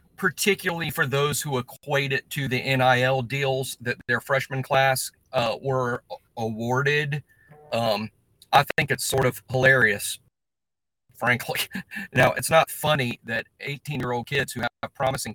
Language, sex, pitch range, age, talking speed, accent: English, male, 115-135 Hz, 40-59, 135 wpm, American